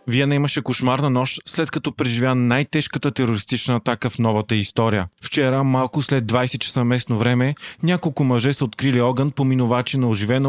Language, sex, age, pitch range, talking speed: Bulgarian, male, 20-39, 120-140 Hz, 160 wpm